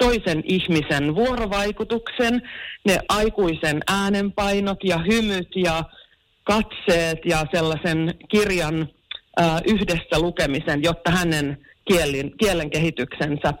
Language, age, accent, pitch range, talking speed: Finnish, 30-49, native, 155-210 Hz, 80 wpm